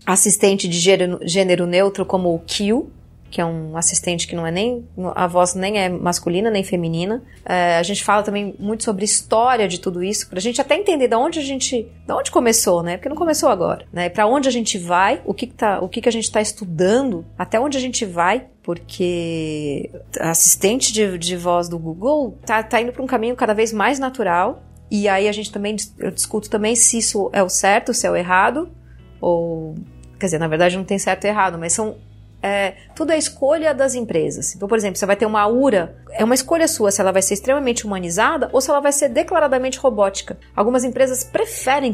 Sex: female